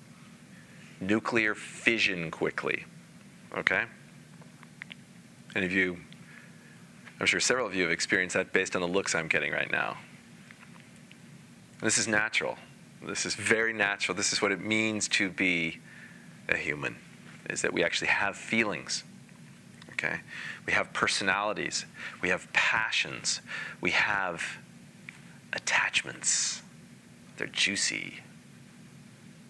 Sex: male